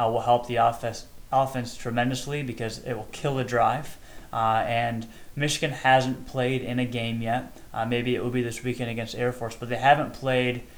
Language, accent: English, American